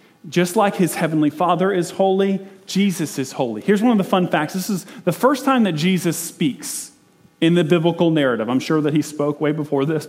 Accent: American